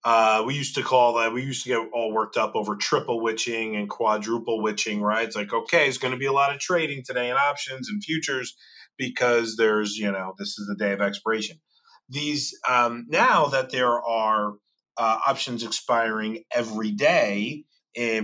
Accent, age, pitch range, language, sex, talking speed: American, 30-49, 110-145 Hz, English, male, 190 wpm